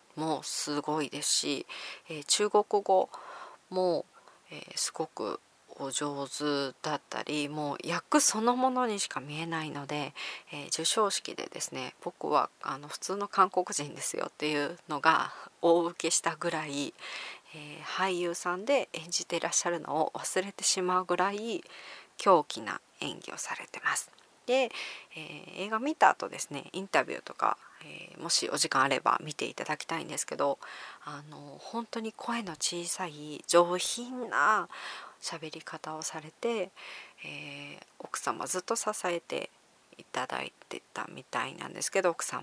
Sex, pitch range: female, 150-195 Hz